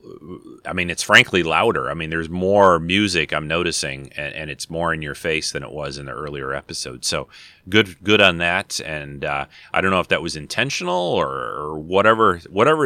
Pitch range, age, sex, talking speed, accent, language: 75-95 Hz, 30-49, male, 205 wpm, American, English